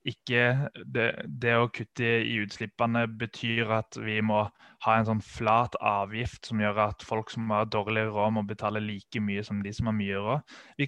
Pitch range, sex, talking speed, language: 110-125 Hz, male, 175 wpm, English